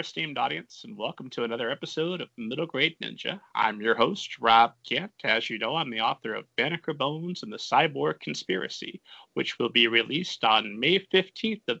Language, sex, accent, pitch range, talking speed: English, male, American, 125-175 Hz, 190 wpm